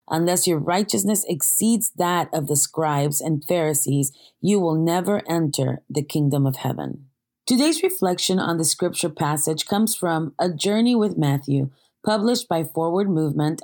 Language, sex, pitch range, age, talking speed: English, female, 155-195 Hz, 30-49, 150 wpm